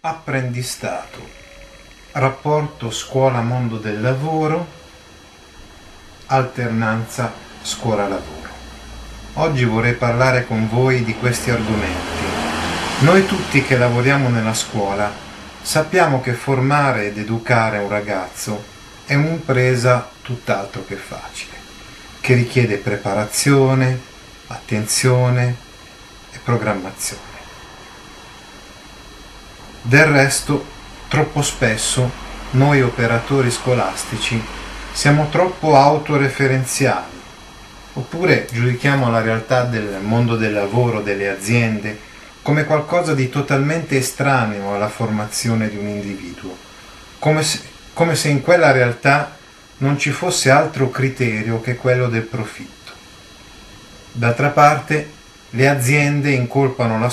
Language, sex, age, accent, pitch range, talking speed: Italian, male, 40-59, native, 105-140 Hz, 95 wpm